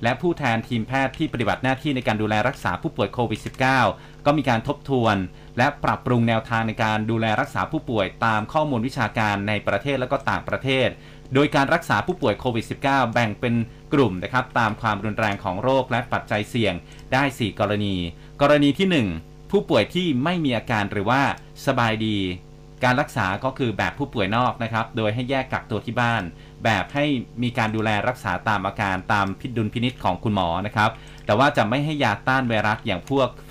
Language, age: Thai, 30-49